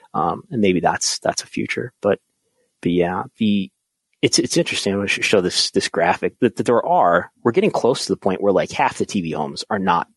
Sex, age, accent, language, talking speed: male, 30-49, American, English, 230 wpm